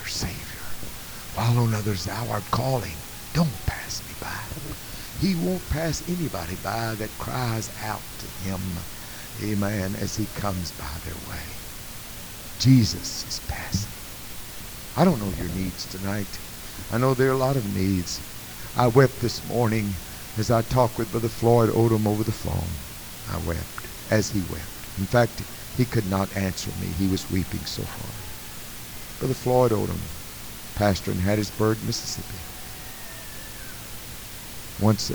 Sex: male